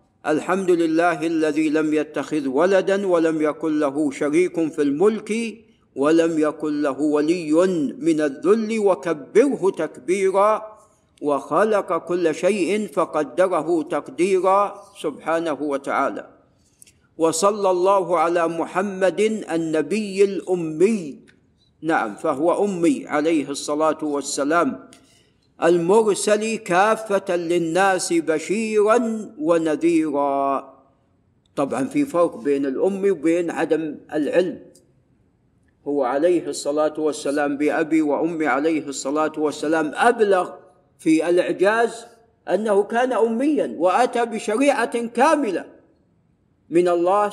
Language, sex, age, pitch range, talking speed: Arabic, male, 50-69, 155-200 Hz, 90 wpm